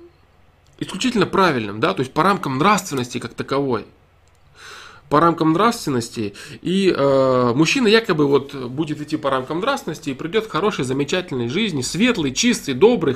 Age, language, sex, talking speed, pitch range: 20-39, Russian, male, 145 wpm, 135-185 Hz